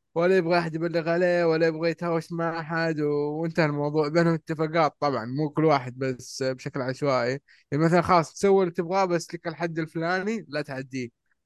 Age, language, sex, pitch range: 20-39, Arabic, male, 135-170 Hz